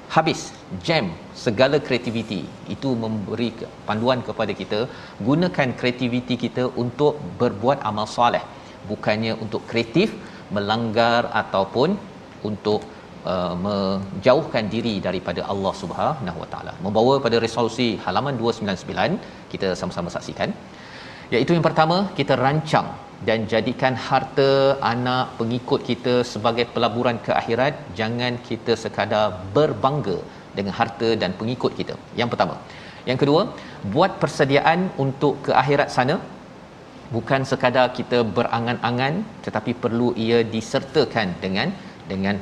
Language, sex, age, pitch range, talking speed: Malayalam, male, 40-59, 110-135 Hz, 115 wpm